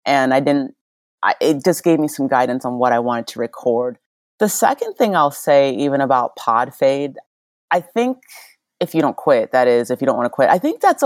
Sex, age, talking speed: female, 30-49, 230 wpm